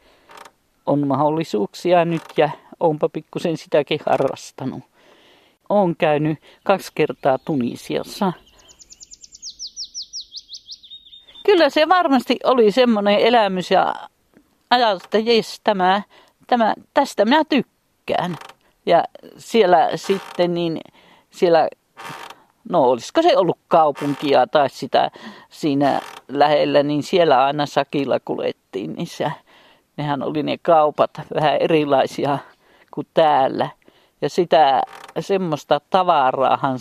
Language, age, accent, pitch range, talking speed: Finnish, 50-69, native, 145-195 Hz, 95 wpm